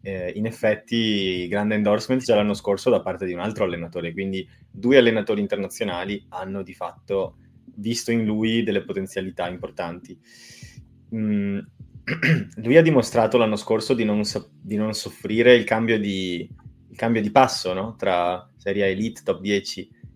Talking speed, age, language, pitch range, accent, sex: 155 wpm, 20-39, Italian, 100-115 Hz, native, male